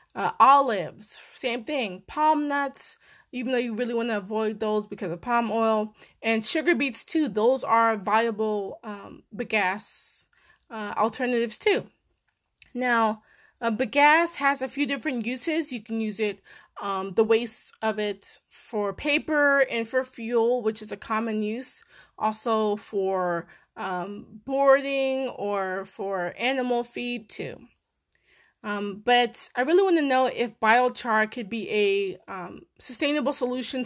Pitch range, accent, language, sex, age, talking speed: 215-260 Hz, American, English, female, 20-39, 145 wpm